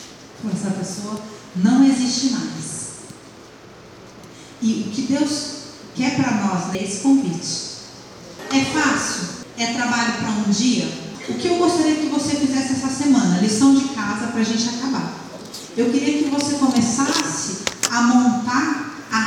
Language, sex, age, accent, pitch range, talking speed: Portuguese, female, 40-59, Brazilian, 215-275 Hz, 145 wpm